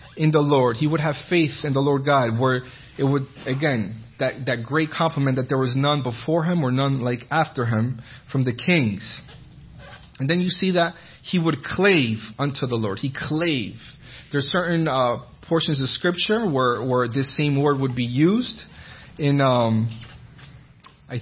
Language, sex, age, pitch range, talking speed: English, male, 30-49, 125-160 Hz, 180 wpm